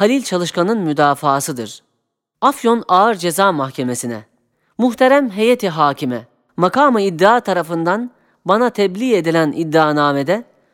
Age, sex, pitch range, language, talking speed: 40-59, female, 165-230 Hz, Turkish, 95 wpm